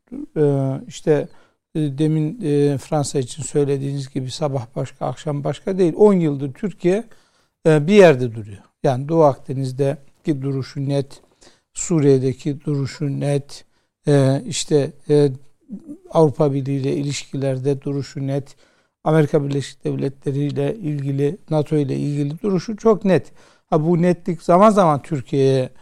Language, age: Turkish, 60-79